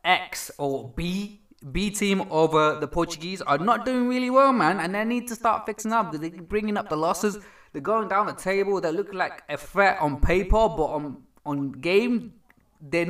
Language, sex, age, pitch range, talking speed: English, male, 20-39, 150-205 Hz, 205 wpm